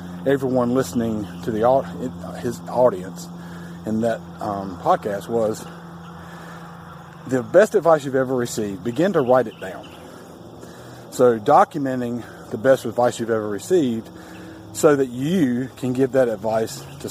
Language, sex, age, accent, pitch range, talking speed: English, male, 40-59, American, 100-130 Hz, 135 wpm